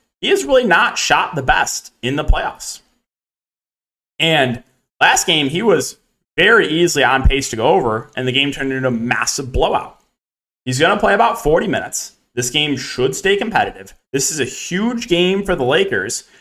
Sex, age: male, 30-49